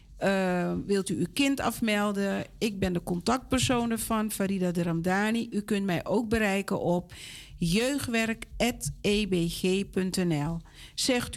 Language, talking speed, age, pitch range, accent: Dutch, 115 wpm, 50-69, 180-230 Hz, Dutch